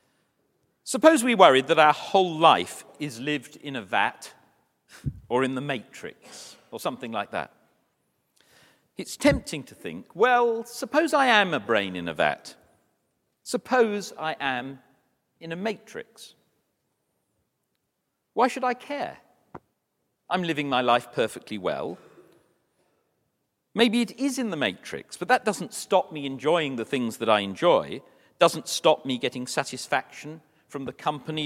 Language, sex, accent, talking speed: English, male, British, 140 wpm